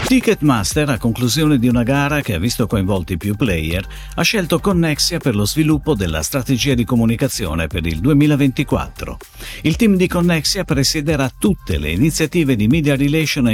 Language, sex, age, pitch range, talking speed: Italian, male, 50-69, 100-155 Hz, 165 wpm